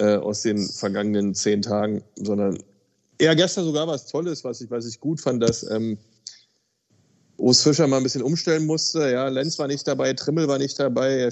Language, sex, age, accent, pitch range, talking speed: German, male, 30-49, German, 115-140 Hz, 190 wpm